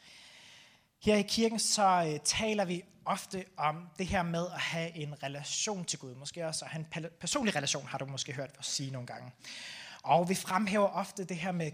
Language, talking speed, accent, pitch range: Danish, 200 wpm, native, 155-205 Hz